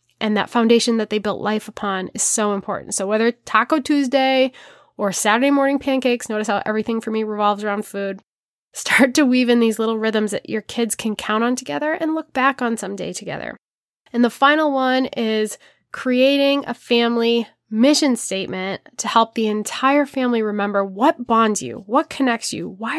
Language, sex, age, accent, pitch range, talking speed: English, female, 20-39, American, 210-260 Hz, 185 wpm